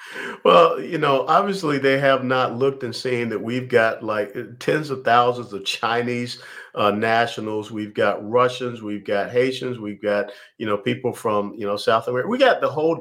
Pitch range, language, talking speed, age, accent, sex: 105-130 Hz, English, 190 wpm, 50-69, American, male